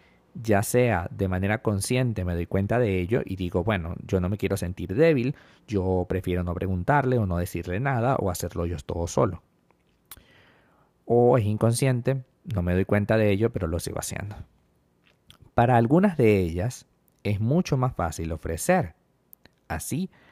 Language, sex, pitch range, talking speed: Spanish, male, 90-125 Hz, 160 wpm